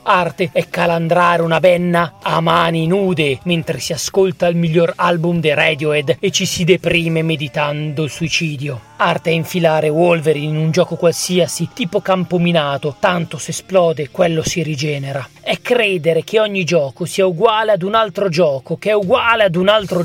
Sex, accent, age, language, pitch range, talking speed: male, native, 30-49, Italian, 160-190 Hz, 170 wpm